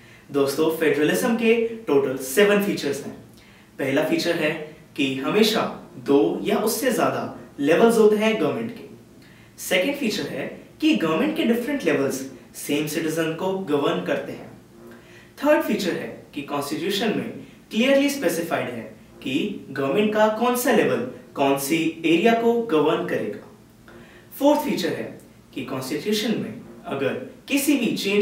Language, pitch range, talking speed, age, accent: English, 145-230 Hz, 135 wpm, 20-39, Indian